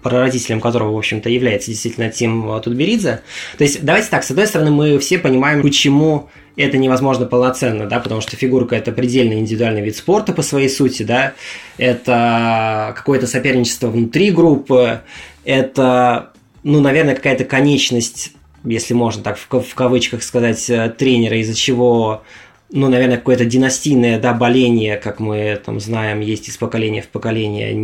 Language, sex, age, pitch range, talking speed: Russian, male, 20-39, 115-135 Hz, 150 wpm